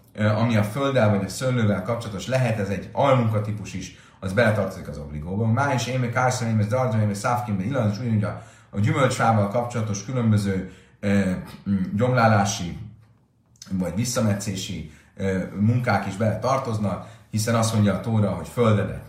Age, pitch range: 30-49, 100-120 Hz